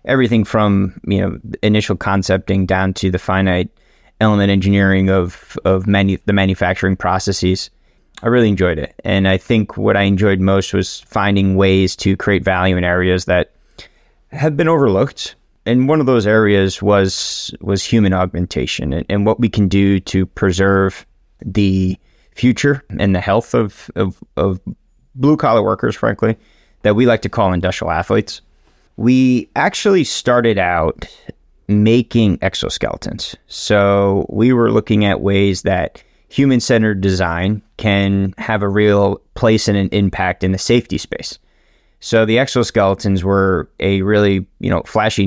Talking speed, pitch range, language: 150 wpm, 95-110 Hz, English